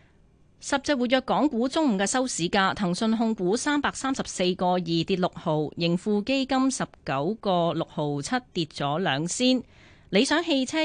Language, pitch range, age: Chinese, 165-235 Hz, 30-49